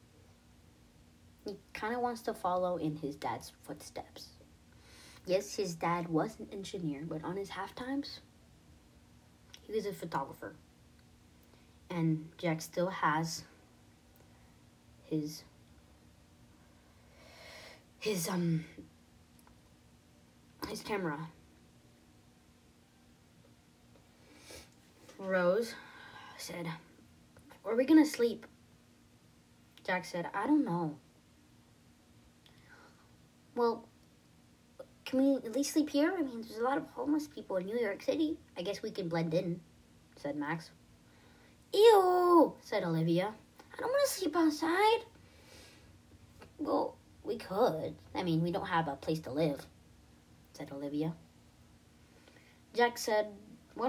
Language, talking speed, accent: English, 110 wpm, American